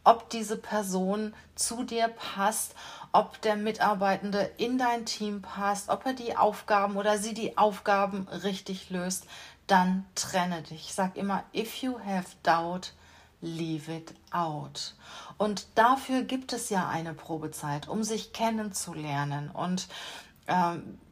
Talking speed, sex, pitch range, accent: 135 wpm, female, 180-225 Hz, German